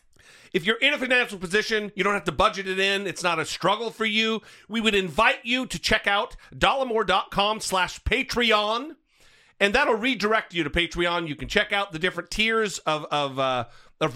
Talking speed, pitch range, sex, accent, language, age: 195 wpm, 160-225 Hz, male, American, English, 40-59